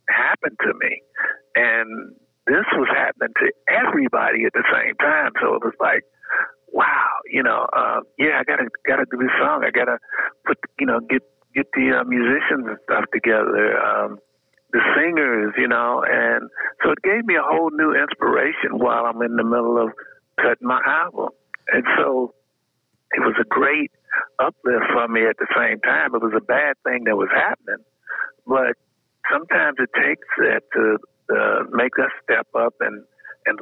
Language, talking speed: English, 175 wpm